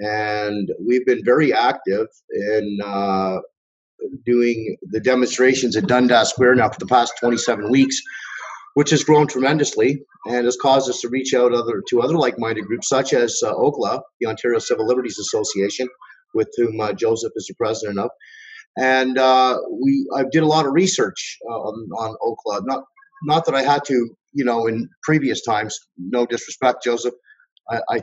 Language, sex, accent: English, male, American